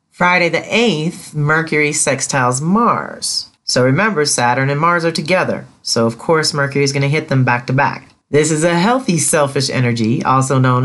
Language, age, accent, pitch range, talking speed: English, 40-59, American, 125-170 Hz, 185 wpm